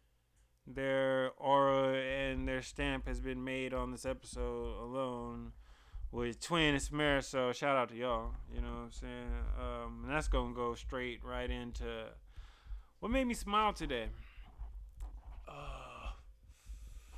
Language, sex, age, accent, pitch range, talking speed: English, male, 20-39, American, 115-165 Hz, 135 wpm